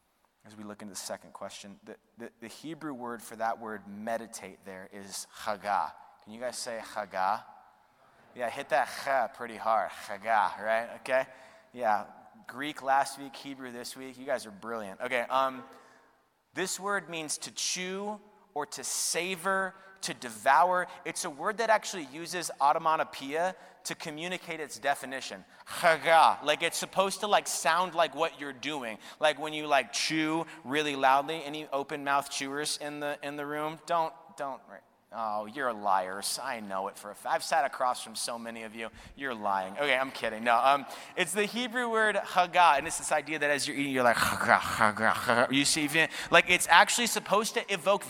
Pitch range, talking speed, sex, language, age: 140-185 Hz, 180 wpm, male, English, 30-49